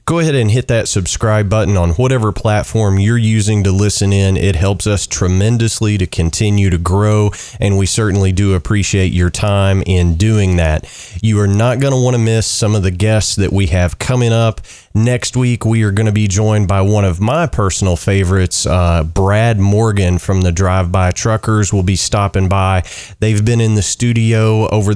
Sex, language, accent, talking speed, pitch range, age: male, English, American, 195 wpm, 95-115 Hz, 30-49